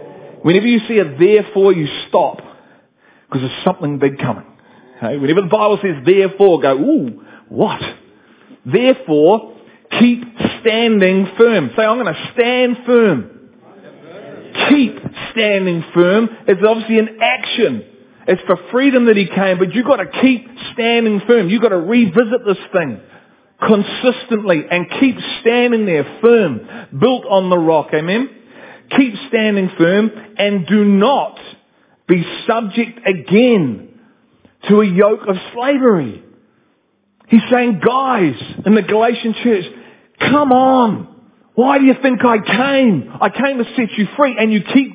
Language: English